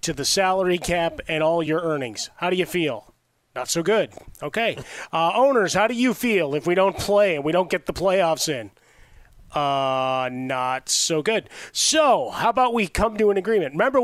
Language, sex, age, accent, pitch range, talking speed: English, male, 30-49, American, 150-195 Hz, 195 wpm